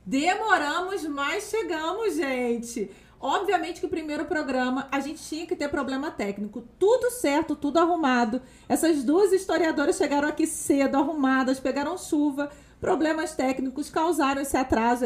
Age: 40-59